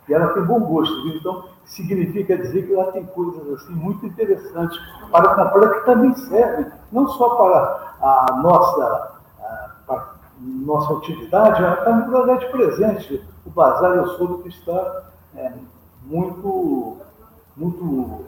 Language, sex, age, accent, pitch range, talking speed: Portuguese, male, 60-79, Brazilian, 155-205 Hz, 150 wpm